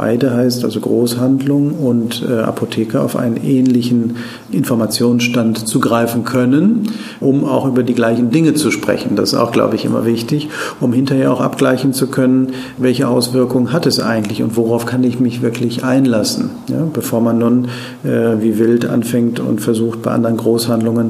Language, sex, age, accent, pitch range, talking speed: German, male, 50-69, German, 115-130 Hz, 170 wpm